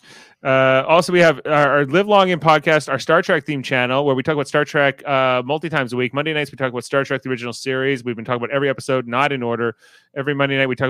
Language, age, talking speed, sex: English, 30-49, 275 wpm, male